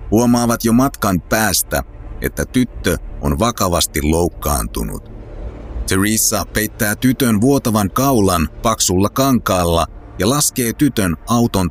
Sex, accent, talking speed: male, native, 100 wpm